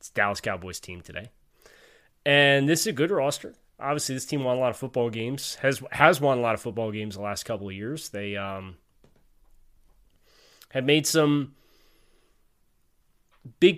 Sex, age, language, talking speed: male, 20-39, English, 170 wpm